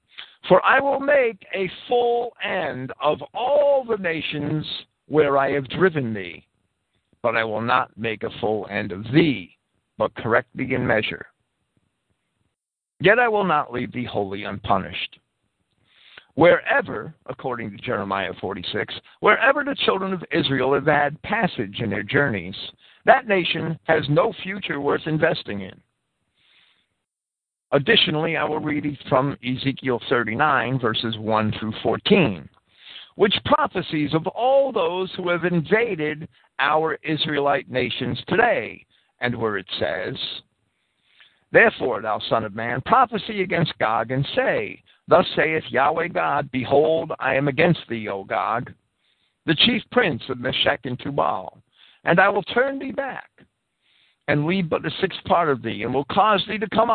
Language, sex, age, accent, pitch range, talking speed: English, male, 50-69, American, 130-195 Hz, 145 wpm